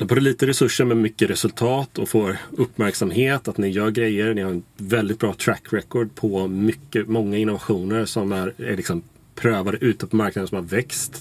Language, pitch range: Swedish, 100-120 Hz